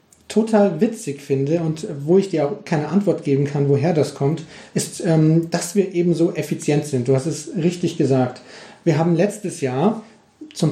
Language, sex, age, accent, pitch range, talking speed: German, male, 40-59, German, 150-190 Hz, 180 wpm